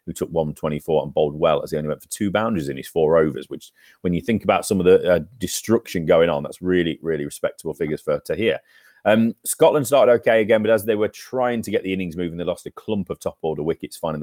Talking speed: 255 wpm